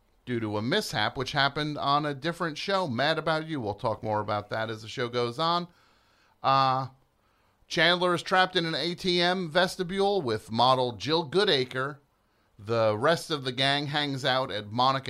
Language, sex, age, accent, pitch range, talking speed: English, male, 40-59, American, 105-145 Hz, 175 wpm